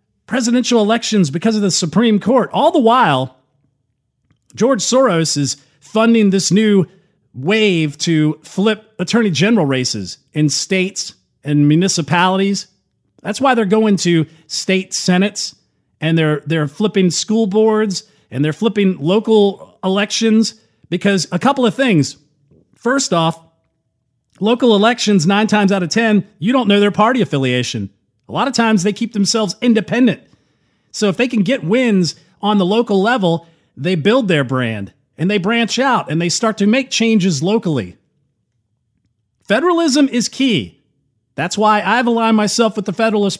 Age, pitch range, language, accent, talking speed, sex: 40-59, 155-225 Hz, English, American, 150 wpm, male